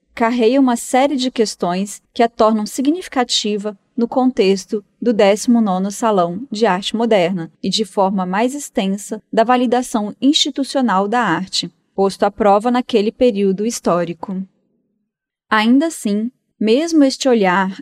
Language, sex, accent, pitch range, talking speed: Portuguese, female, Brazilian, 195-250 Hz, 130 wpm